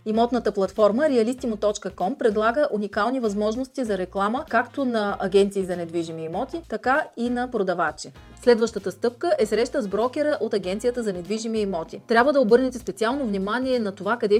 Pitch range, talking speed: 190-245 Hz, 155 wpm